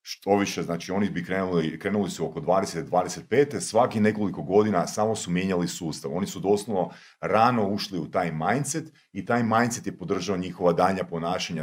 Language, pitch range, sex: Croatian, 90-130 Hz, male